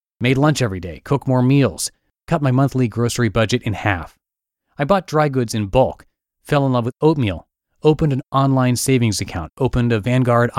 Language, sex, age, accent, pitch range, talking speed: English, male, 30-49, American, 105-135 Hz, 185 wpm